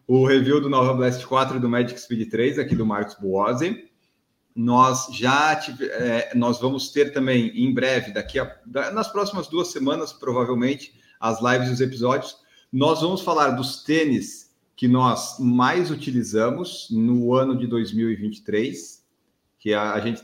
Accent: Brazilian